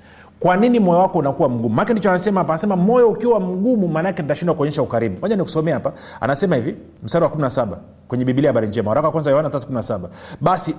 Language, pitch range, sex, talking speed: Swahili, 125-190 Hz, male, 185 wpm